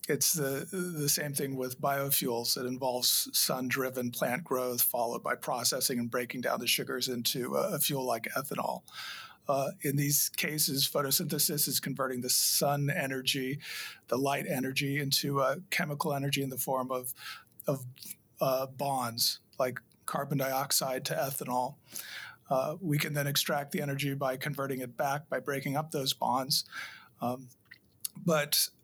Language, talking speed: English, 150 wpm